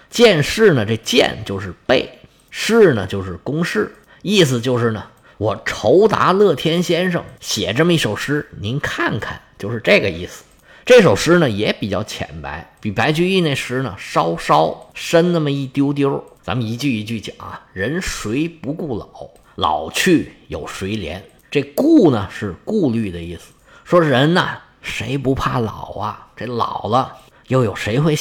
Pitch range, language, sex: 105-160 Hz, Chinese, male